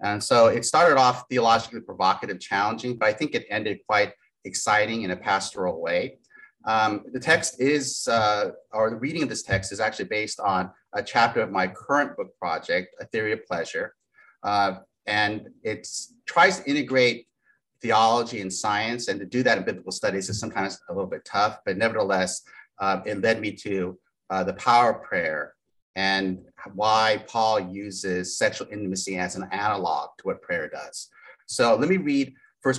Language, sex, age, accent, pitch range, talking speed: English, male, 30-49, American, 100-125 Hz, 180 wpm